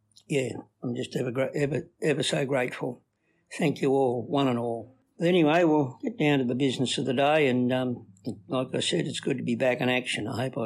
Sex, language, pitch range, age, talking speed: male, English, 120-145 Hz, 60-79, 220 wpm